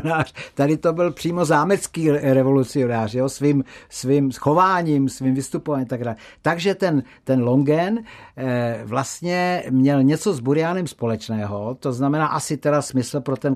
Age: 60-79